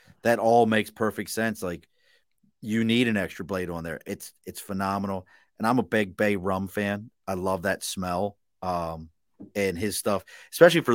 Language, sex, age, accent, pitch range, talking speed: English, male, 30-49, American, 95-115 Hz, 180 wpm